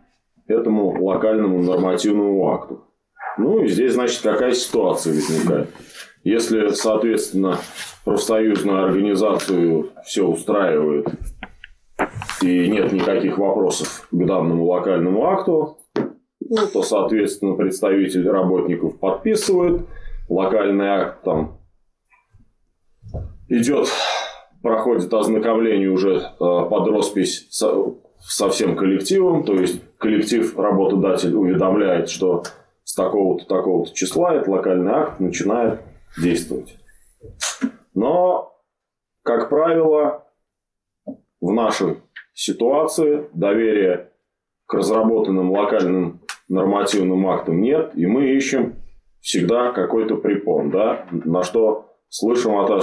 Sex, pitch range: male, 90-135 Hz